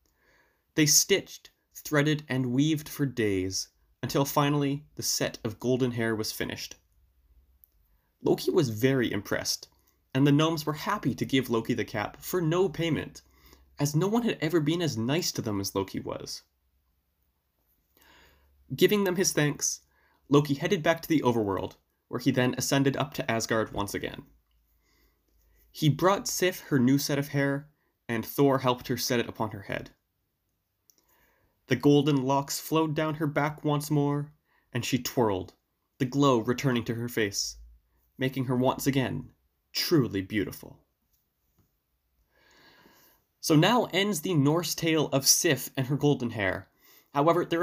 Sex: male